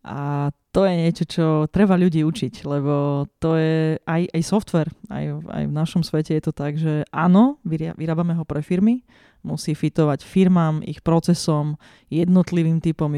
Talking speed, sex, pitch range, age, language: 160 wpm, female, 155-185 Hz, 20-39, Slovak